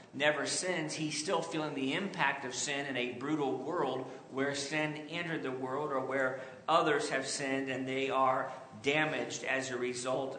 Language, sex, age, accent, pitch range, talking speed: English, male, 50-69, American, 135-170 Hz, 175 wpm